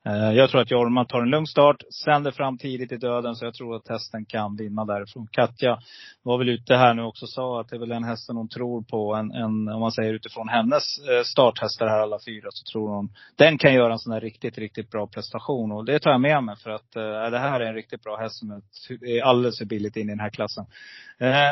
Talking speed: 250 wpm